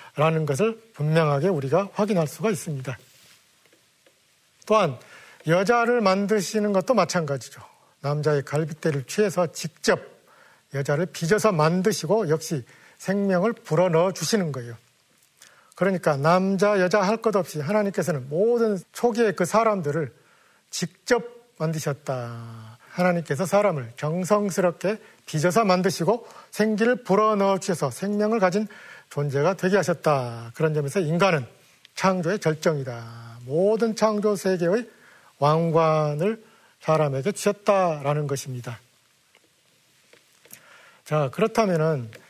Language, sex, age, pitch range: Korean, male, 40-59, 150-210 Hz